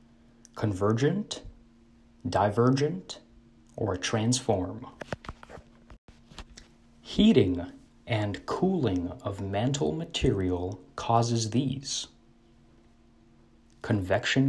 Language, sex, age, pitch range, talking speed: English, male, 30-49, 100-130 Hz, 55 wpm